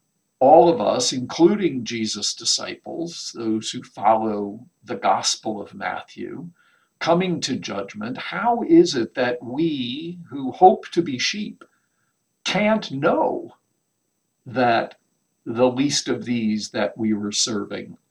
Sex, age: male, 50-69